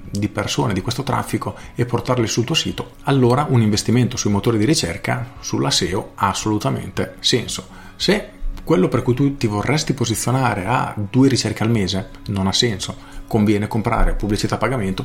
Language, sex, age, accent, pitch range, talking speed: Italian, male, 40-59, native, 100-125 Hz, 170 wpm